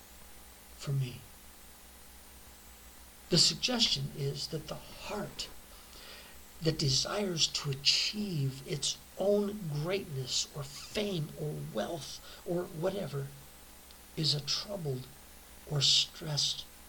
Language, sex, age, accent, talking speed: English, male, 60-79, American, 90 wpm